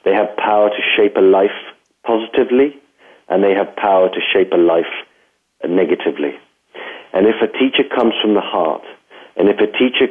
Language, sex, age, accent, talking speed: English, male, 40-59, British, 170 wpm